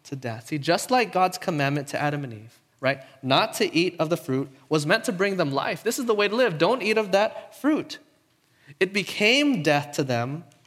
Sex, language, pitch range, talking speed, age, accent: male, English, 135-185 Hz, 215 wpm, 20-39, American